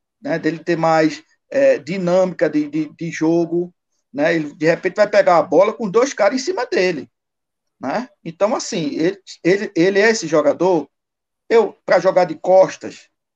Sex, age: male, 60-79